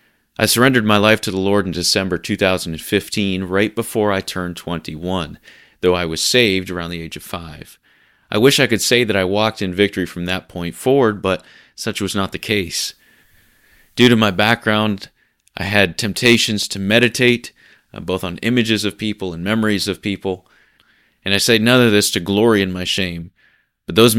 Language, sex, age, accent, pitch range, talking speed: English, male, 30-49, American, 90-110 Hz, 190 wpm